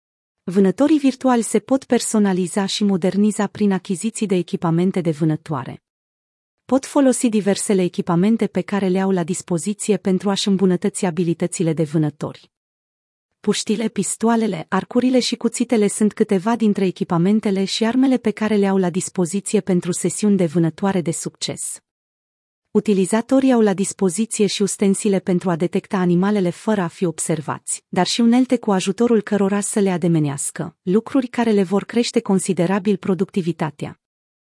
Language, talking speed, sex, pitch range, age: Romanian, 145 wpm, female, 180-220 Hz, 30-49